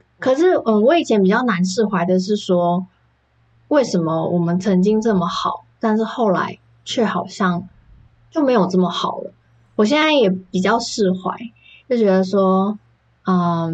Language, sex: Chinese, female